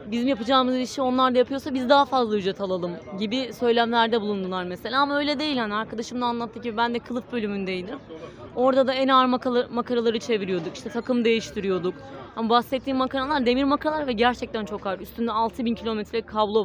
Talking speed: 175 wpm